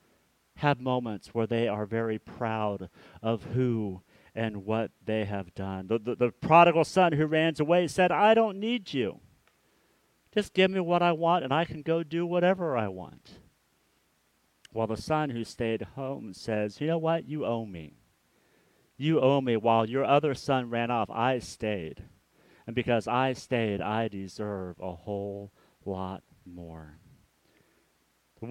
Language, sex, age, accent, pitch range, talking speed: English, male, 40-59, American, 110-160 Hz, 160 wpm